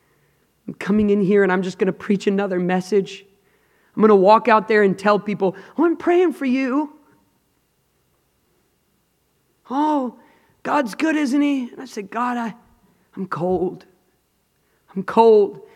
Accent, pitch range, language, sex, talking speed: American, 175-225 Hz, English, male, 150 wpm